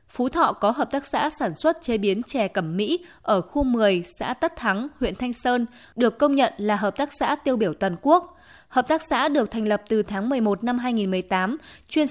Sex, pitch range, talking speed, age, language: female, 210-265 Hz, 225 wpm, 20-39, Vietnamese